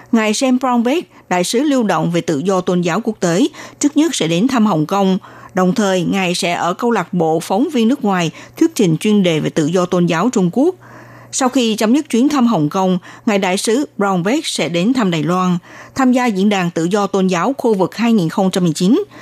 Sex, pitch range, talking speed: female, 175-235 Hz, 225 wpm